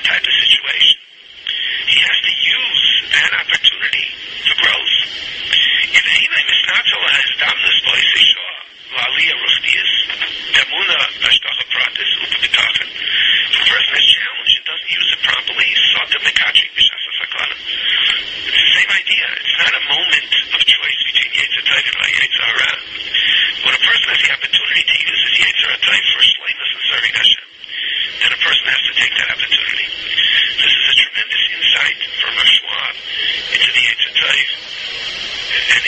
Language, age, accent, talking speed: English, 60-79, American, 115 wpm